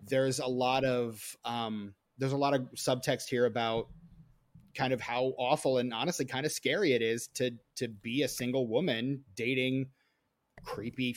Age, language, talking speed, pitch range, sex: 30-49, English, 165 wpm, 120-140 Hz, male